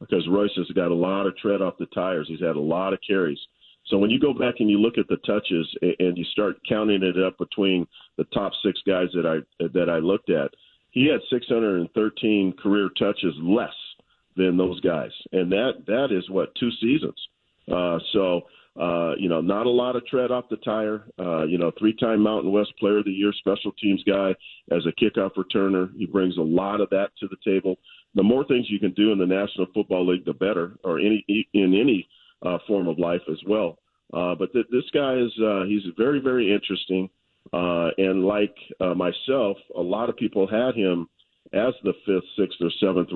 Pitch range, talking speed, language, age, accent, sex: 90-105 Hz, 210 wpm, English, 40-59, American, male